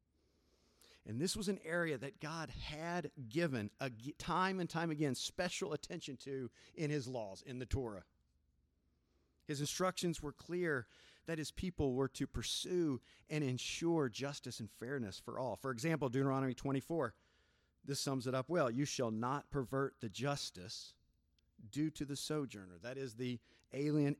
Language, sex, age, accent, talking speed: English, male, 40-59, American, 155 wpm